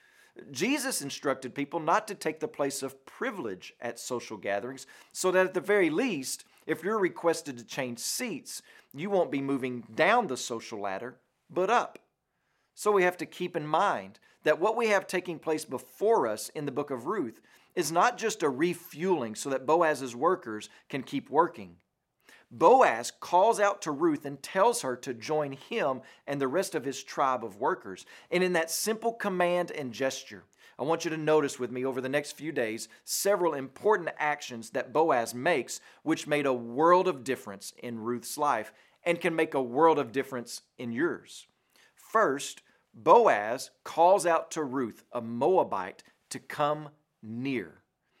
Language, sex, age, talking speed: English, male, 40-59, 175 wpm